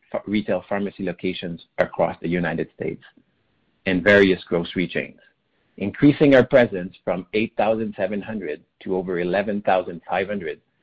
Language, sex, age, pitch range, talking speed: English, male, 50-69, 90-120 Hz, 105 wpm